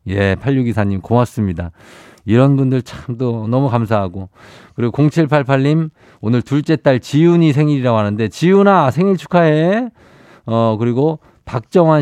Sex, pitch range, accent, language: male, 105-155 Hz, native, Korean